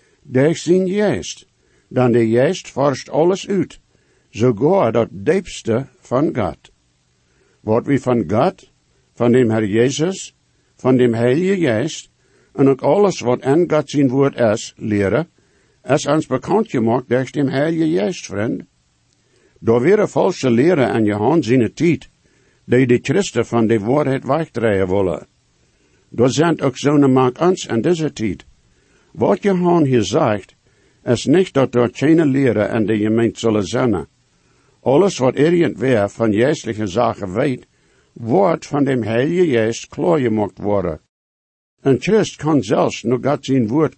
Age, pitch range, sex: 60-79, 110-145 Hz, male